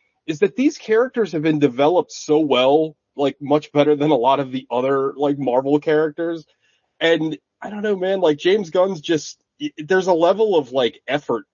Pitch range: 125-165 Hz